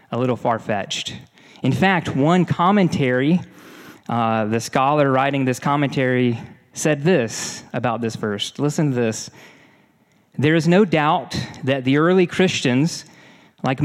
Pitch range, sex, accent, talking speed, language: 125-165 Hz, male, American, 130 wpm, English